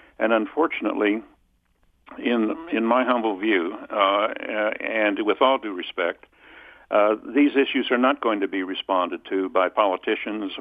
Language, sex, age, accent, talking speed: English, male, 60-79, American, 140 wpm